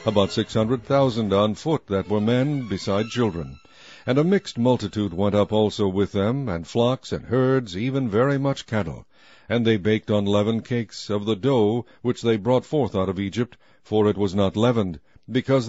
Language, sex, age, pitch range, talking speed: English, male, 60-79, 105-135 Hz, 190 wpm